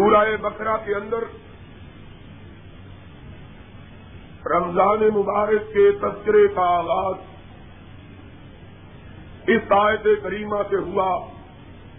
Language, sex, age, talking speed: Urdu, male, 50-69, 75 wpm